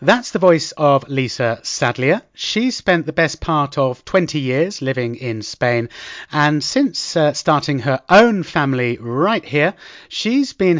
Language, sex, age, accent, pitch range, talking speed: English, male, 30-49, British, 130-170 Hz, 155 wpm